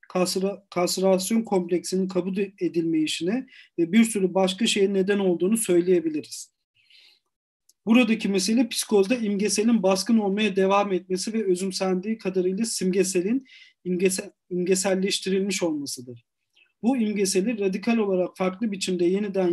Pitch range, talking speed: 175-205 Hz, 105 wpm